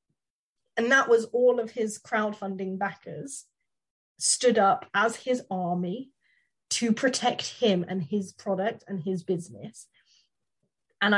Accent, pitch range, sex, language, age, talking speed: British, 185-235 Hz, female, English, 20-39, 125 wpm